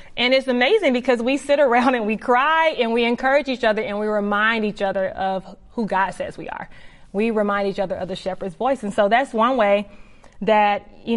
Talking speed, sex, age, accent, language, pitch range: 220 wpm, female, 30-49, American, English, 205-255 Hz